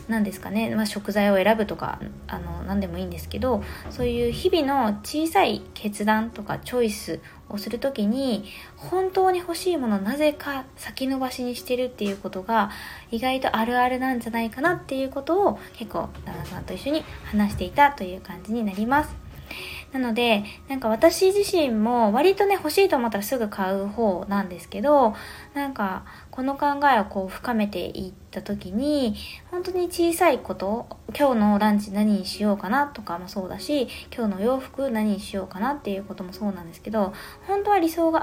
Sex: female